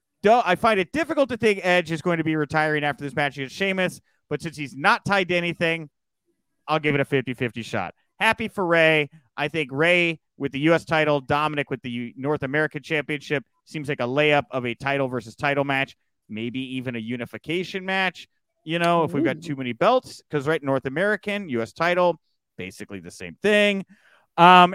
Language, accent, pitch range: English, American, 135-175 Hz